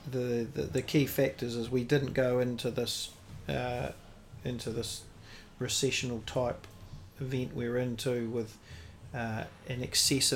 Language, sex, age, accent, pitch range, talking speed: English, male, 40-59, Australian, 115-140 Hz, 140 wpm